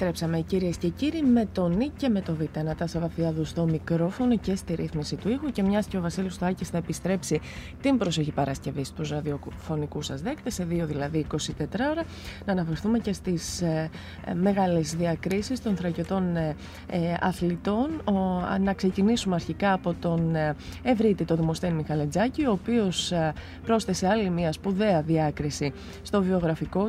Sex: female